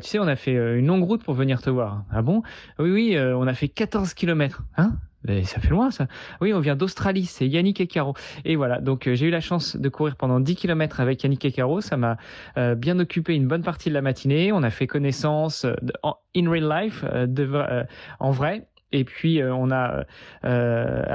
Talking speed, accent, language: 240 wpm, French, French